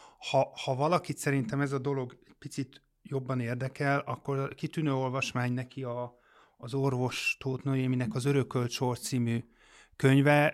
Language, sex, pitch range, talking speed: Hungarian, male, 125-140 Hz, 130 wpm